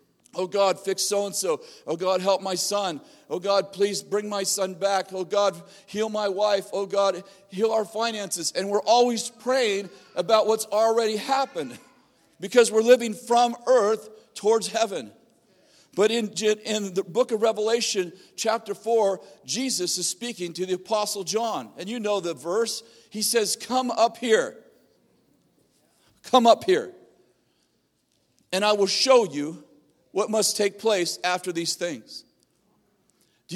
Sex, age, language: male, 50-69, English